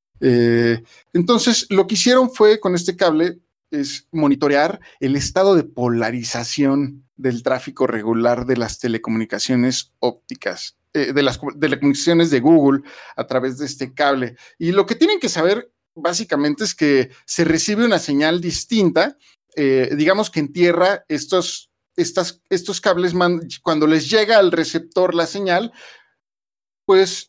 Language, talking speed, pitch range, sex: Spanish, 140 wpm, 130-175 Hz, male